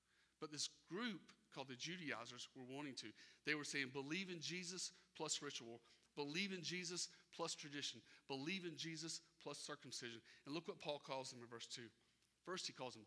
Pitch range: 135-175 Hz